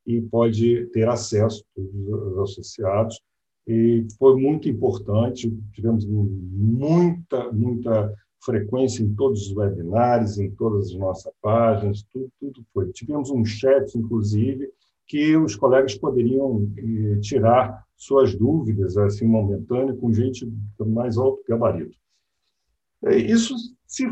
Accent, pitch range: Brazilian, 105-135 Hz